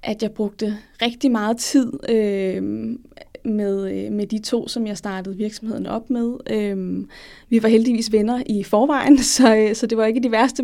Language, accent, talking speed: Danish, native, 165 wpm